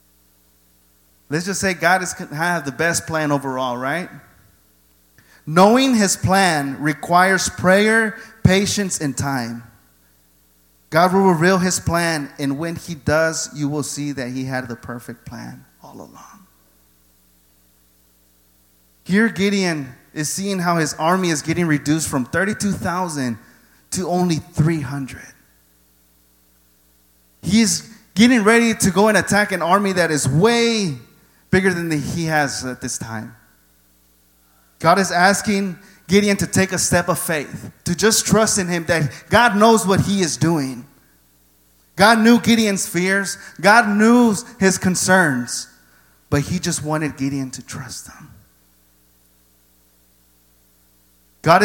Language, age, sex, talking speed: English, 30-49, male, 130 wpm